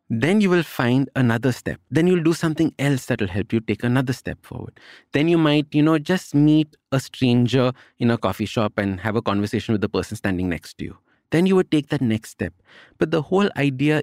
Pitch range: 110-150 Hz